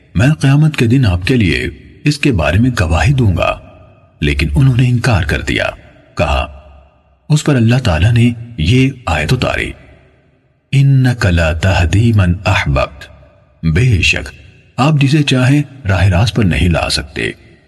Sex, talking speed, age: male, 140 wpm, 50-69